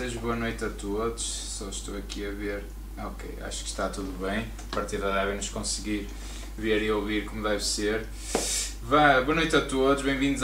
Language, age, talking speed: Portuguese, 20-39, 195 wpm